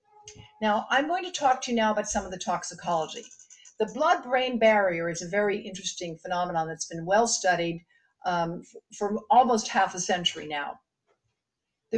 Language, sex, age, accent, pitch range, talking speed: English, female, 60-79, American, 175-230 Hz, 170 wpm